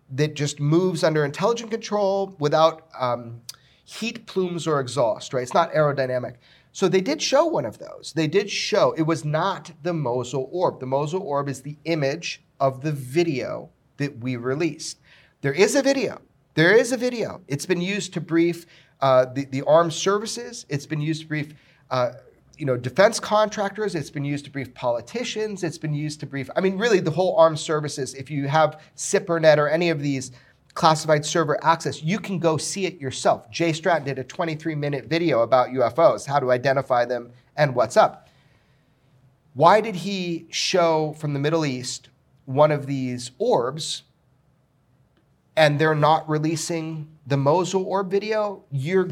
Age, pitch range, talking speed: 40-59, 140-175 Hz, 175 wpm